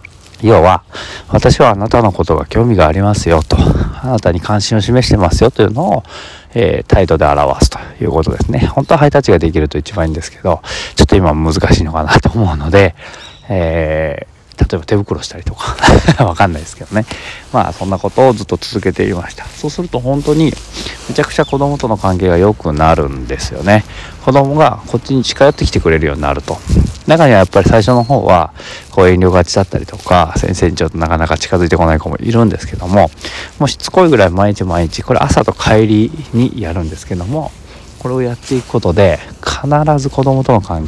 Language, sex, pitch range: Japanese, male, 80-115 Hz